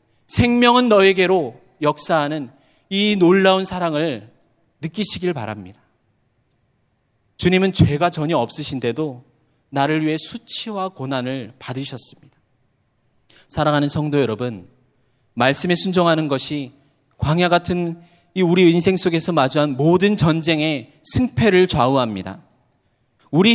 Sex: male